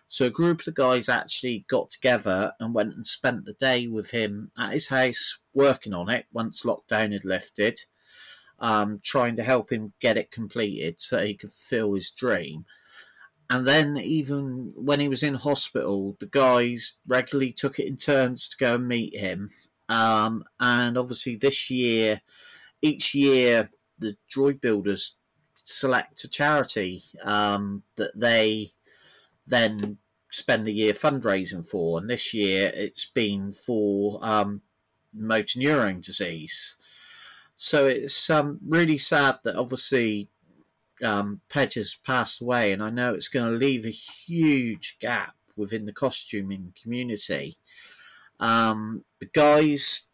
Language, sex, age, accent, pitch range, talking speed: English, male, 30-49, British, 105-135 Hz, 145 wpm